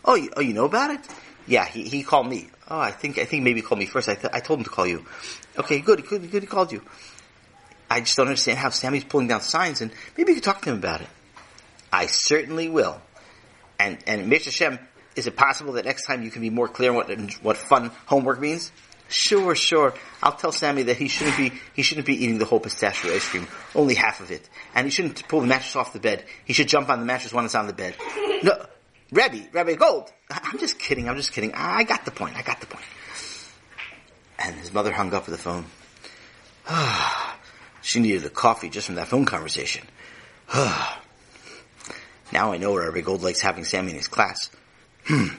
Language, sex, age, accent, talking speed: English, male, 40-59, American, 225 wpm